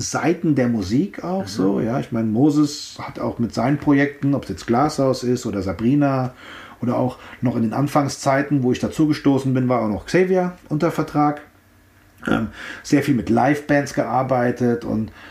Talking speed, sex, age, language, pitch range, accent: 175 wpm, male, 40-59, German, 120-160 Hz, German